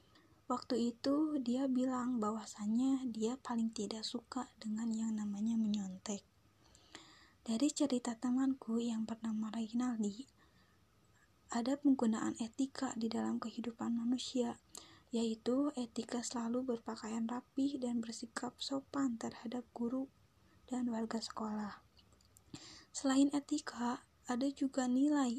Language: Indonesian